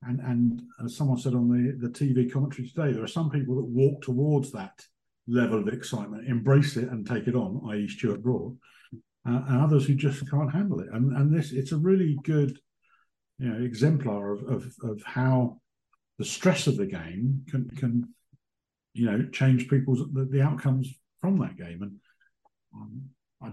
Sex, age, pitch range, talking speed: male, 50-69, 120-140 Hz, 185 wpm